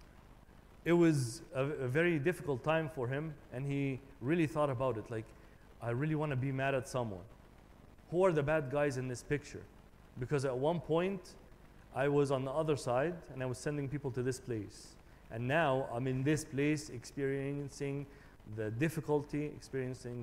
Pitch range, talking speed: 120-150 Hz, 180 wpm